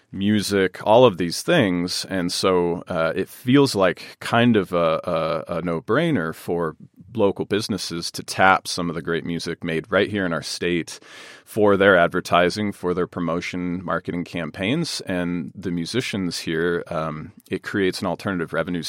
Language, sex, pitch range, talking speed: English, male, 85-95 Hz, 160 wpm